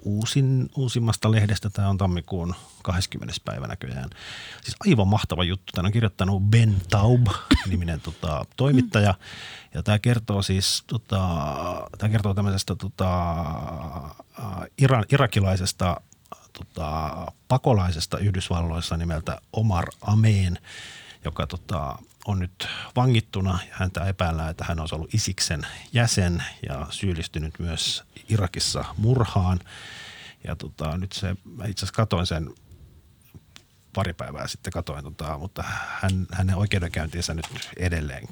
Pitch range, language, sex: 85-105 Hz, Finnish, male